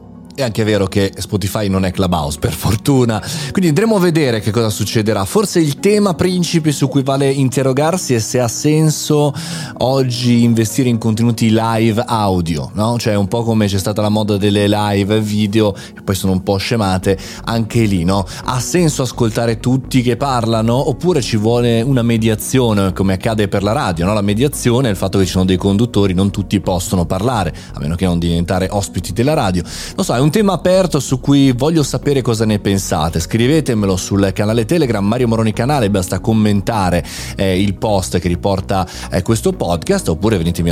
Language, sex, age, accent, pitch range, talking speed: Italian, male, 30-49, native, 95-135 Hz, 185 wpm